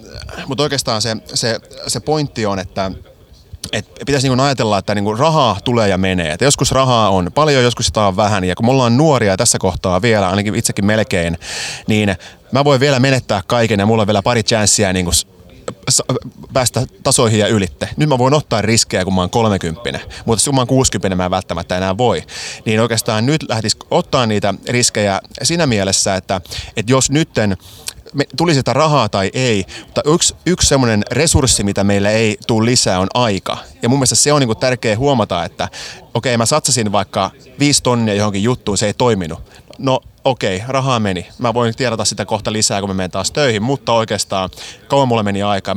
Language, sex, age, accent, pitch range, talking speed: Finnish, male, 30-49, native, 100-130 Hz, 195 wpm